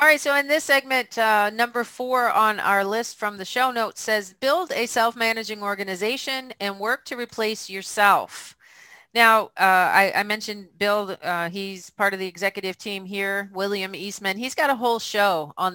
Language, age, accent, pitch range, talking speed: English, 40-59, American, 190-235 Hz, 185 wpm